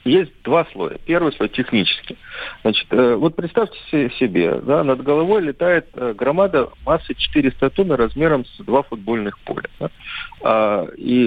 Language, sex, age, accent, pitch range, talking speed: Russian, male, 40-59, native, 110-160 Hz, 140 wpm